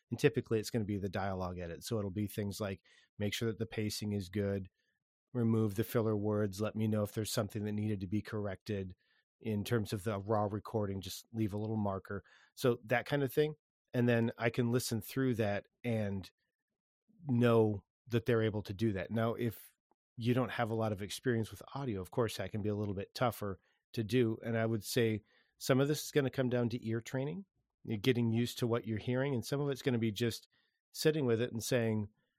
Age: 40-59